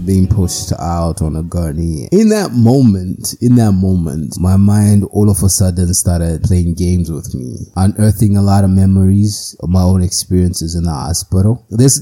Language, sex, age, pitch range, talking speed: English, male, 20-39, 85-105 Hz, 180 wpm